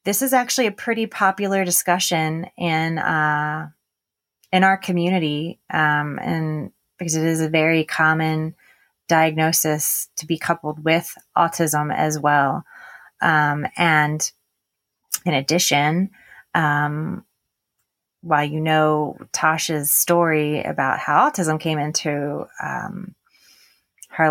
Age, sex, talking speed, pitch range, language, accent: 30-49, female, 110 wpm, 150-175 Hz, English, American